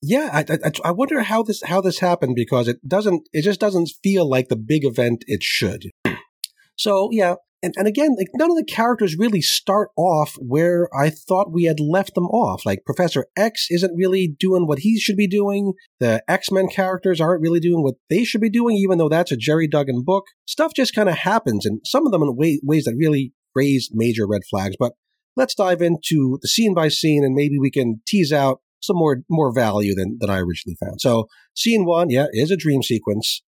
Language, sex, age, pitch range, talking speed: English, male, 40-59, 125-195 Hz, 220 wpm